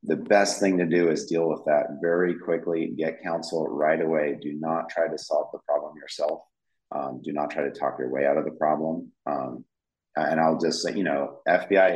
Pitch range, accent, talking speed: 75-85 Hz, American, 220 wpm